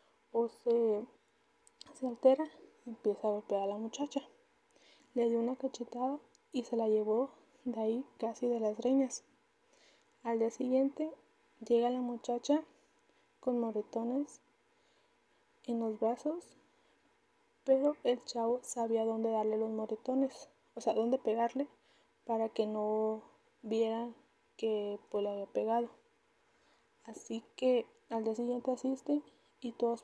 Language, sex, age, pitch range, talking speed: Spanish, female, 20-39, 225-265 Hz, 130 wpm